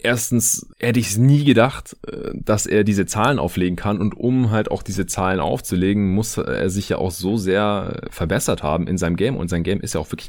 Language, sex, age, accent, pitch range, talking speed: German, male, 30-49, German, 80-100 Hz, 220 wpm